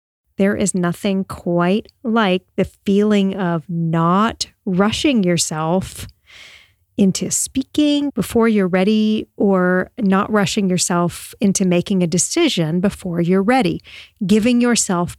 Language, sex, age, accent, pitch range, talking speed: English, female, 40-59, American, 170-210 Hz, 115 wpm